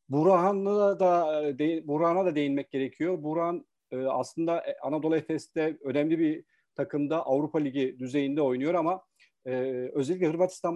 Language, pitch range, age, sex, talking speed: Turkish, 135-160 Hz, 40-59, male, 125 wpm